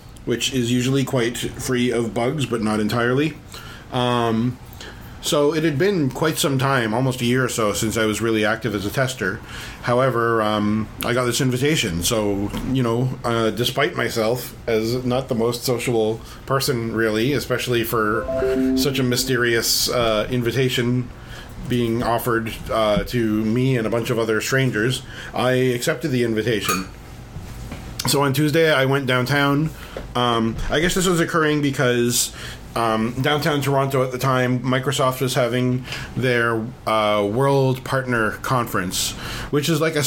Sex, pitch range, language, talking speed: male, 115-135 Hz, English, 155 wpm